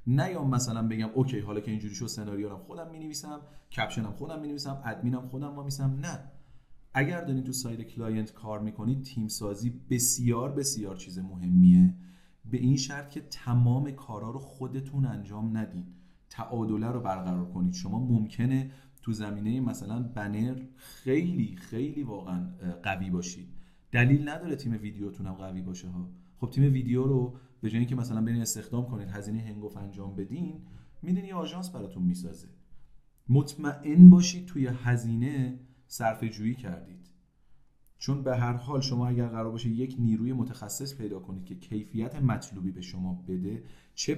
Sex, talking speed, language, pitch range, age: male, 160 wpm, Persian, 100-135 Hz, 40-59